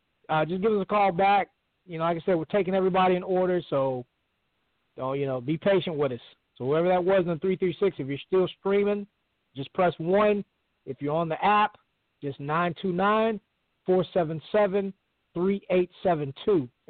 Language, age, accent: English, 40-59, American